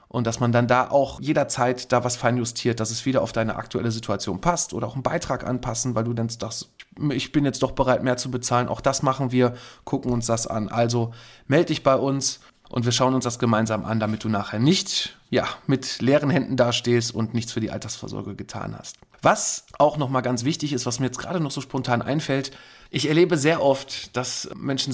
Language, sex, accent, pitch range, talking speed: German, male, German, 120-150 Hz, 220 wpm